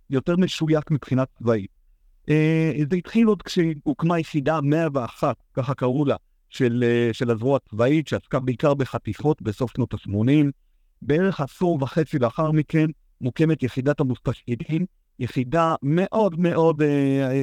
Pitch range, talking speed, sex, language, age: 130-165 Hz, 125 wpm, male, Hebrew, 50-69